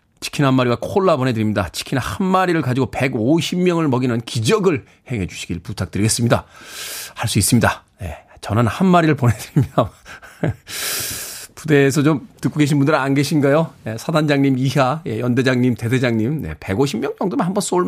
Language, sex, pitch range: Korean, male, 115-160 Hz